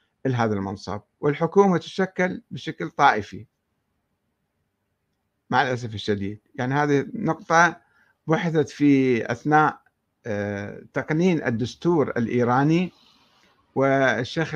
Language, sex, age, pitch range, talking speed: Arabic, male, 50-69, 115-170 Hz, 80 wpm